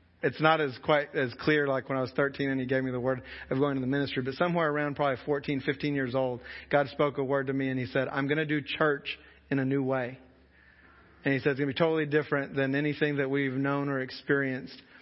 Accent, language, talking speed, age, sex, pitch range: American, English, 255 wpm, 40-59, male, 140-175 Hz